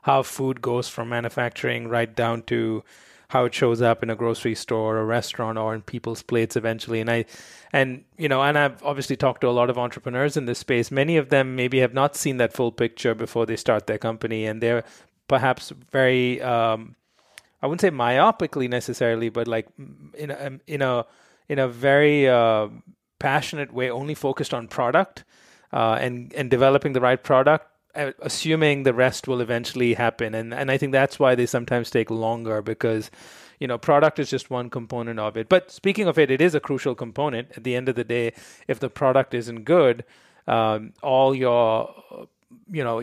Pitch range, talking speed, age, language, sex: 115-140 Hz, 195 wpm, 30-49, English, male